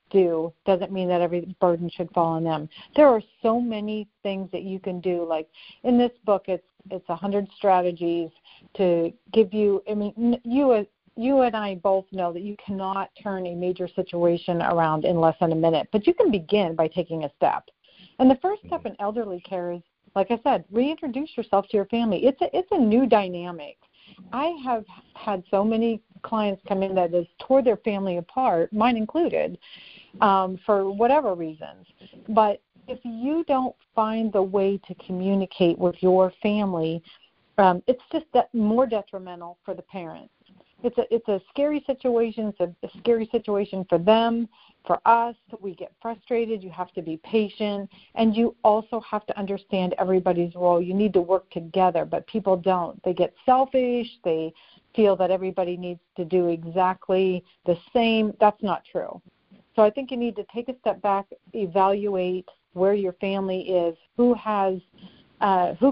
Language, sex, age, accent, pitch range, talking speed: English, female, 50-69, American, 180-225 Hz, 180 wpm